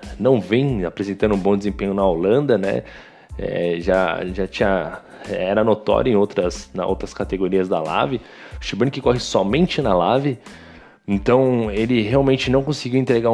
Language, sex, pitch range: Portuguese, male, 105-130 Hz